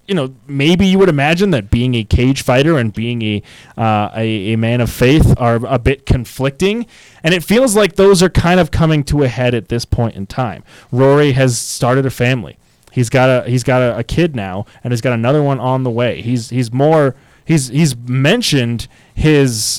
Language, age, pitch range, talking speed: English, 20-39, 125-165 Hz, 210 wpm